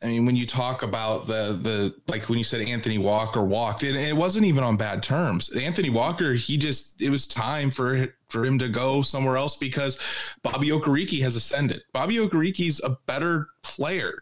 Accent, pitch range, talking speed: American, 115-145 Hz, 195 wpm